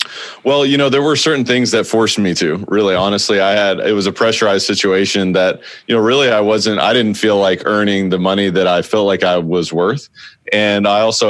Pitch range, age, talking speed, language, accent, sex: 95-110 Hz, 30-49, 230 wpm, English, American, male